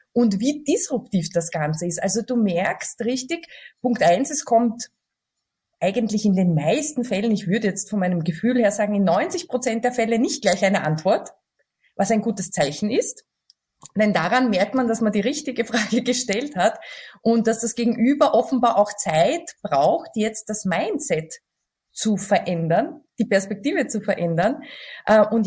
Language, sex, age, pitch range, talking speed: German, female, 20-39, 195-250 Hz, 165 wpm